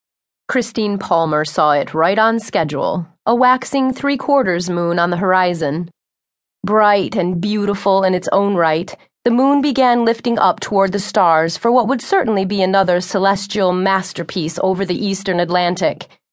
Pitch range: 175-215 Hz